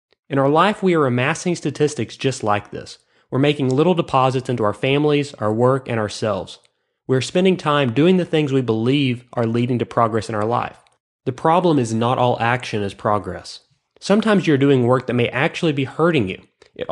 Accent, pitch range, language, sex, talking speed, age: American, 115-155 Hz, English, male, 195 wpm, 30-49